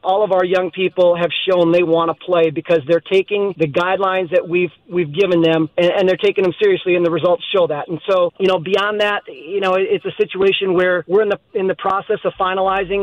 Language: English